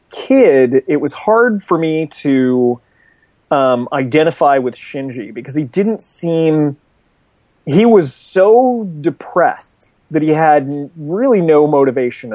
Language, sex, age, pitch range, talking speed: English, male, 30-49, 130-170 Hz, 120 wpm